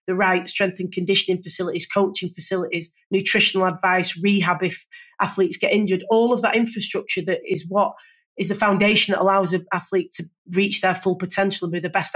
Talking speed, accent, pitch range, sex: 190 wpm, British, 180-205 Hz, female